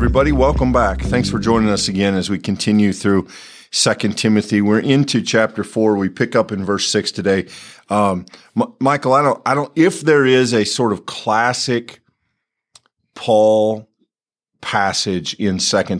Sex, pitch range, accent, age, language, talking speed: male, 100-125 Hz, American, 50-69, English, 160 wpm